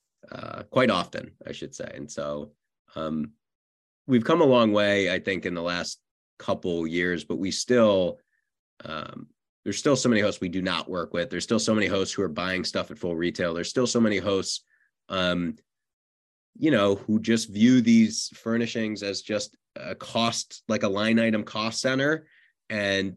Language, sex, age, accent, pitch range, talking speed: English, male, 30-49, American, 90-115 Hz, 185 wpm